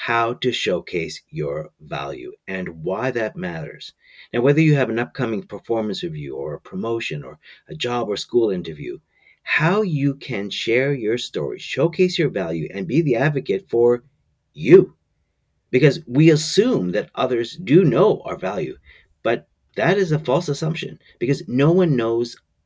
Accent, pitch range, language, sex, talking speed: American, 110-180 Hz, English, male, 160 wpm